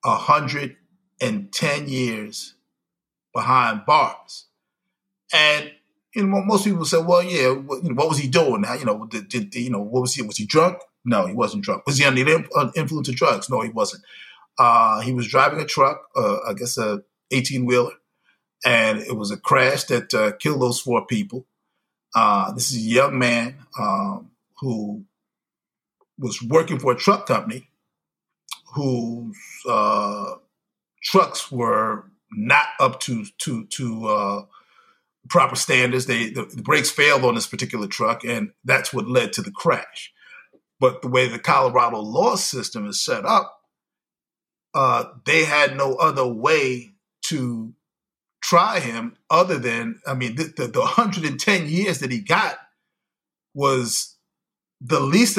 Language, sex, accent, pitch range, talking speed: English, male, American, 120-160 Hz, 160 wpm